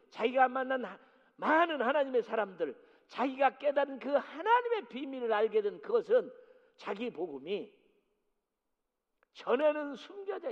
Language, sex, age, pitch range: Korean, male, 50-69, 190-290 Hz